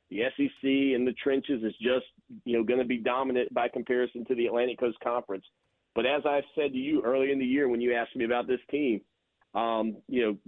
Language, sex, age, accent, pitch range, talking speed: English, male, 40-59, American, 115-145 Hz, 230 wpm